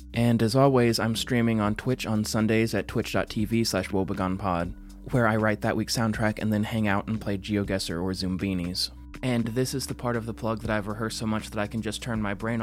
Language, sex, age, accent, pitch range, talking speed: English, male, 20-39, American, 100-115 Hz, 225 wpm